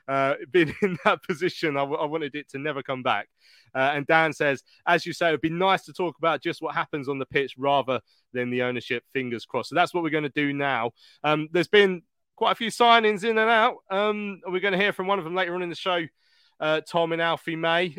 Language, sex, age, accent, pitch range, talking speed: English, male, 20-39, British, 135-180 Hz, 250 wpm